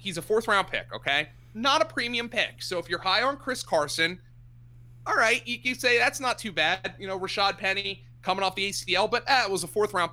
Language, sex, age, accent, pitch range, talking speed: English, male, 30-49, American, 120-195 Hz, 230 wpm